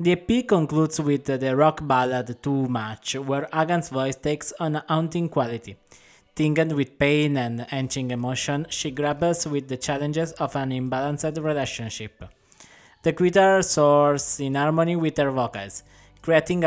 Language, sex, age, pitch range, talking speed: English, male, 20-39, 130-160 Hz, 150 wpm